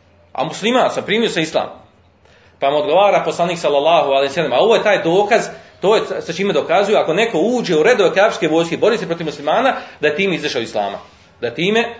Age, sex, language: 40-59, male, Croatian